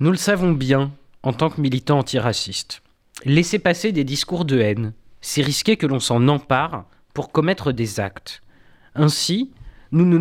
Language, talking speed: French, 165 wpm